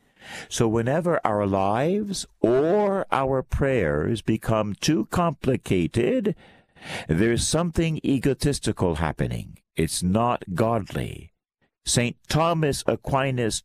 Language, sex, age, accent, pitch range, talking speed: English, male, 60-79, American, 90-125 Hz, 90 wpm